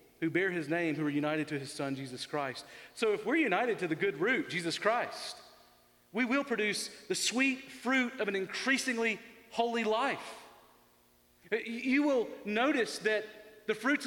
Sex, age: male, 40-59